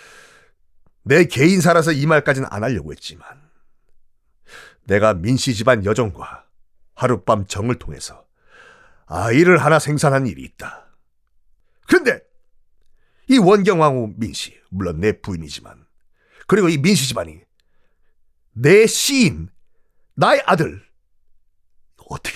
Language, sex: Korean, male